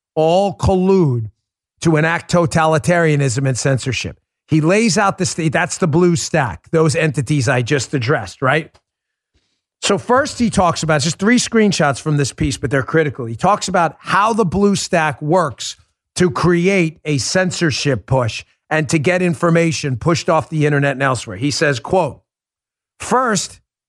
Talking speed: 160 wpm